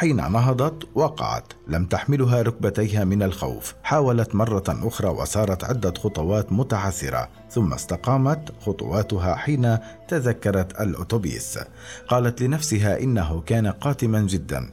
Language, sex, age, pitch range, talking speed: Arabic, male, 50-69, 95-120 Hz, 110 wpm